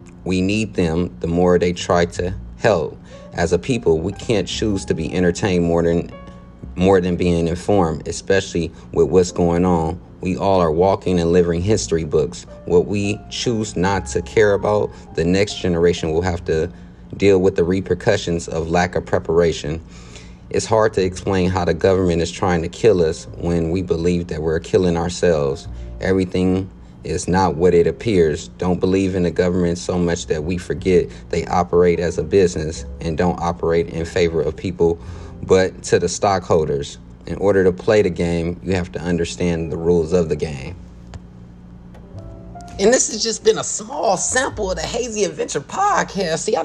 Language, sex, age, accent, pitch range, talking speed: English, male, 30-49, American, 85-95 Hz, 180 wpm